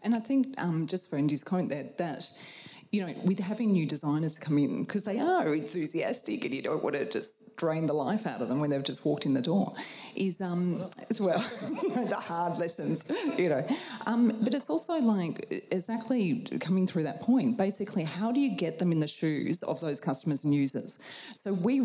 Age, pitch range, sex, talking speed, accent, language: 30-49, 160-220 Hz, female, 210 wpm, Australian, English